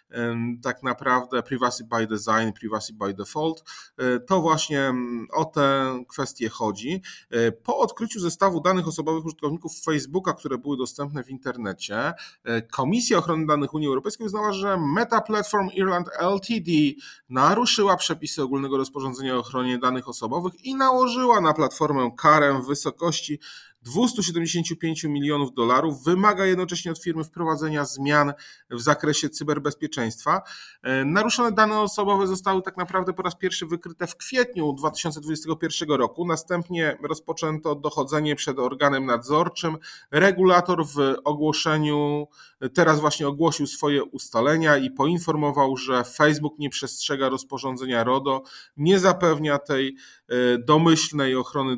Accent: native